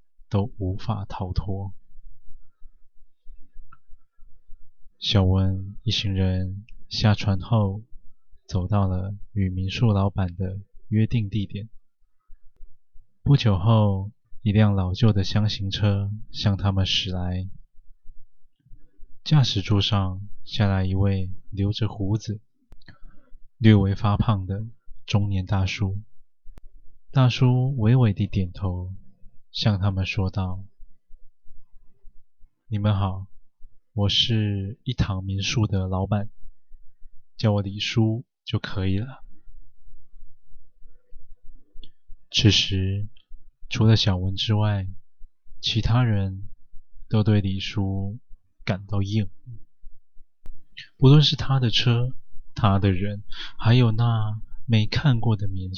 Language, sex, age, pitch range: Chinese, male, 20-39, 100-115 Hz